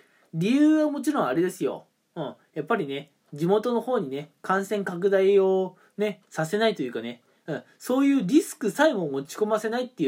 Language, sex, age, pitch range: Japanese, male, 20-39, 155-240 Hz